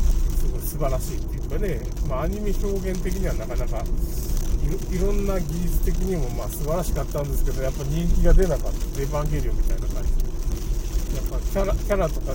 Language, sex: Japanese, male